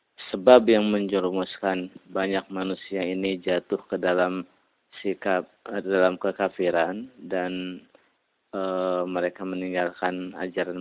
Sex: male